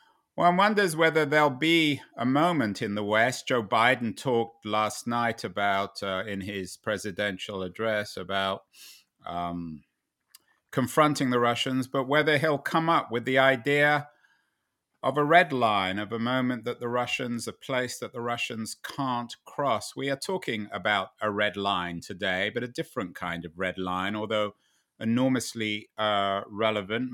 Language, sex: English, male